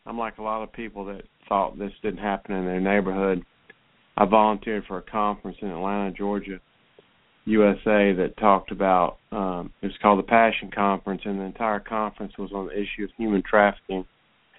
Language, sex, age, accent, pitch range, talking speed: English, male, 50-69, American, 95-105 Hz, 180 wpm